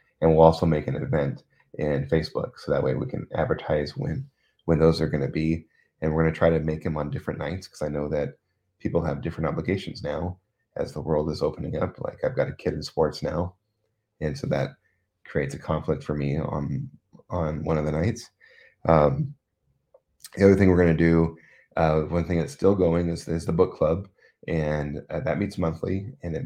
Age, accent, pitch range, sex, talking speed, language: 30-49, American, 80-90 Hz, male, 215 wpm, English